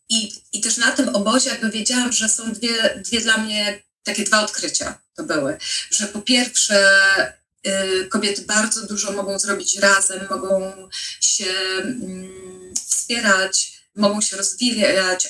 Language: Polish